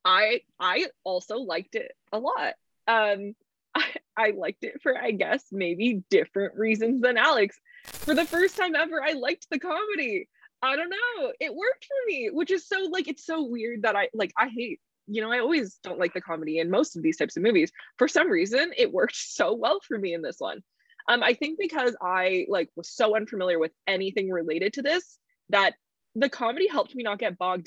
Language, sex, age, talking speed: English, female, 20-39, 210 wpm